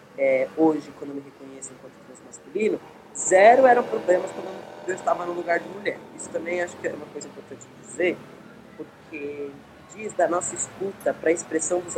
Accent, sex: Brazilian, female